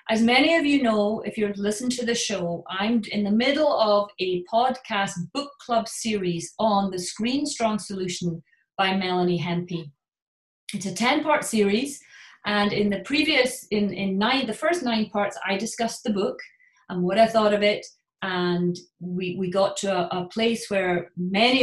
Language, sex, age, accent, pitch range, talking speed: English, female, 30-49, British, 180-225 Hz, 180 wpm